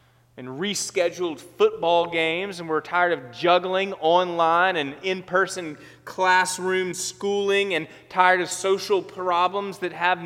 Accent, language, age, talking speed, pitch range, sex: American, English, 30-49, 125 wpm, 125-185 Hz, male